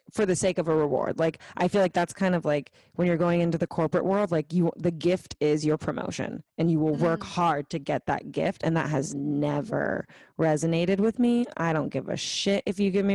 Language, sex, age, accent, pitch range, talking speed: English, female, 20-39, American, 150-190 Hz, 240 wpm